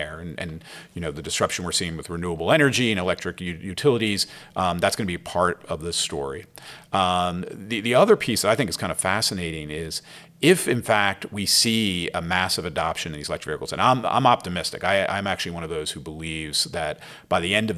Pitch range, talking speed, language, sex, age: 80-105 Hz, 220 wpm, English, male, 50-69